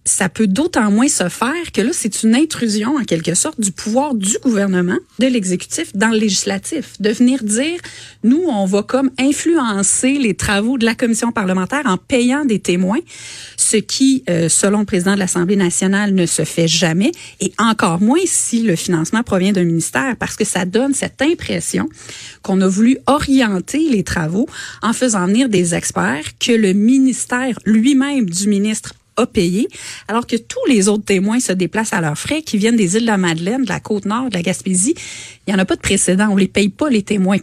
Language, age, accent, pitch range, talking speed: French, 30-49, Canadian, 185-245 Hz, 200 wpm